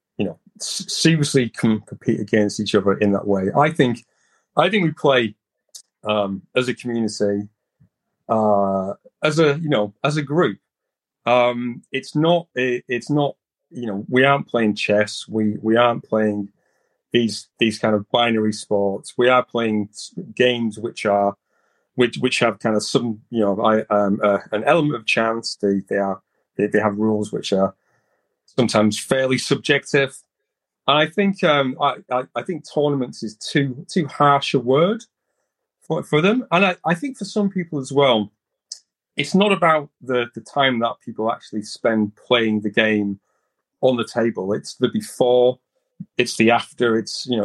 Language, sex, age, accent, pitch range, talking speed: English, male, 30-49, British, 105-140 Hz, 165 wpm